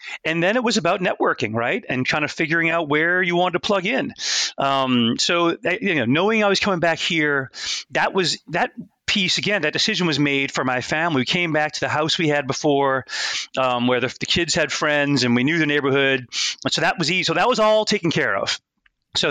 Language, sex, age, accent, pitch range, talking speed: English, male, 40-59, American, 135-175 Hz, 230 wpm